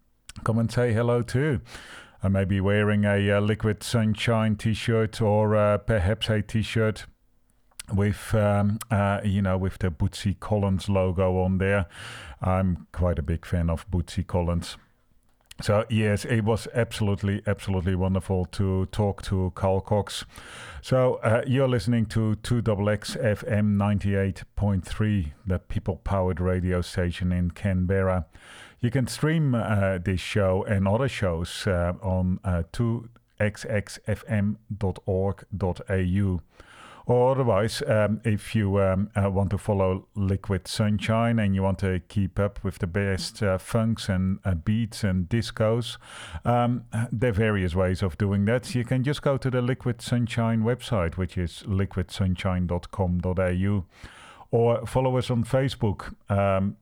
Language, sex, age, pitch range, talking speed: English, male, 40-59, 95-115 Hz, 140 wpm